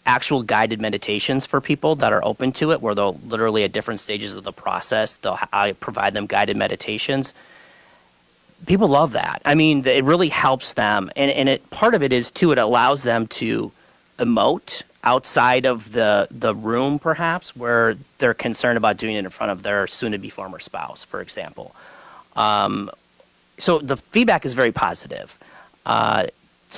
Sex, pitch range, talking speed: male, 110-150 Hz, 170 wpm